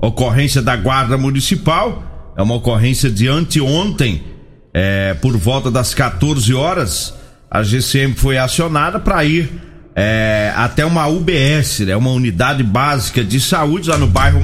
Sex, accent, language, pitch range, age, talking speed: male, Brazilian, Portuguese, 115-155 Hz, 40-59, 135 wpm